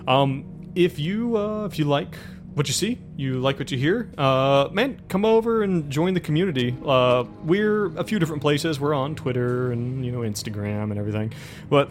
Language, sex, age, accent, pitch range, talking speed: English, male, 30-49, American, 110-150 Hz, 195 wpm